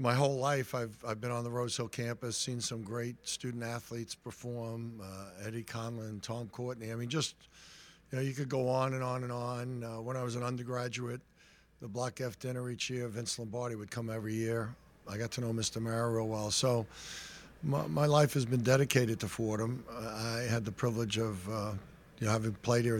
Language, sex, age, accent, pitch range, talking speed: English, male, 60-79, American, 110-125 Hz, 210 wpm